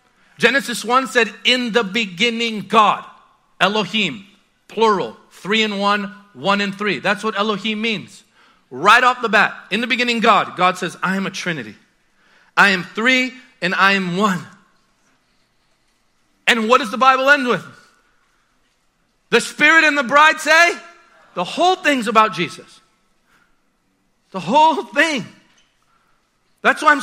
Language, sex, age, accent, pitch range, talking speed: English, male, 40-59, American, 180-235 Hz, 140 wpm